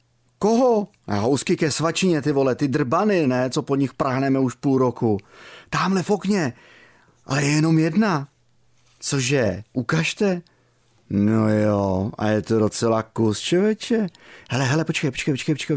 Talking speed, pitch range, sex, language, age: 150 wpm, 120-180 Hz, male, Czech, 30-49